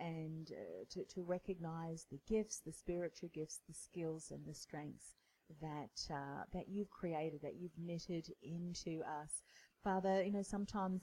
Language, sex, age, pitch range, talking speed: English, female, 40-59, 150-180 Hz, 160 wpm